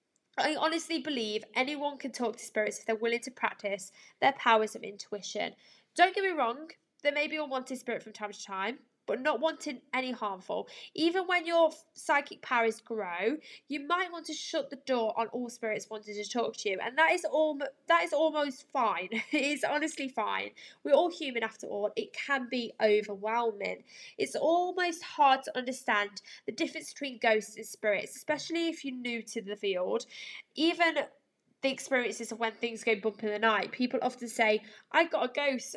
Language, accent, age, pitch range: English, British, 10-29, 220-300 Hz